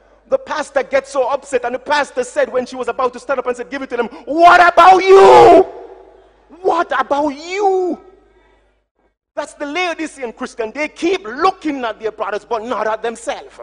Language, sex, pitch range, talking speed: English, male, 210-335 Hz, 185 wpm